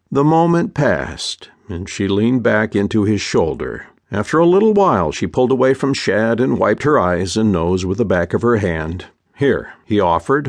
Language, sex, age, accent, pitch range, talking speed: English, male, 50-69, American, 110-150 Hz, 195 wpm